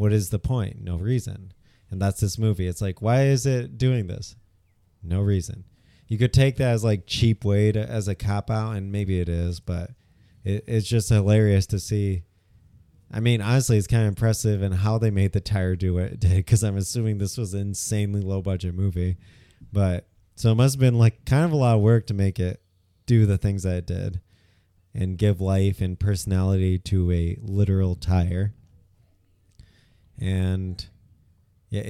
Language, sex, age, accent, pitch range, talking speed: English, male, 20-39, American, 95-110 Hz, 190 wpm